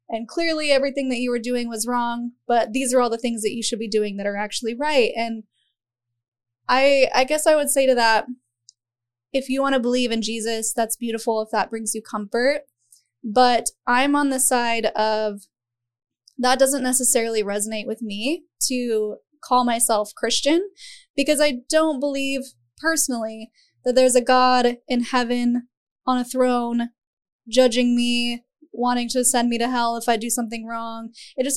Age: 10-29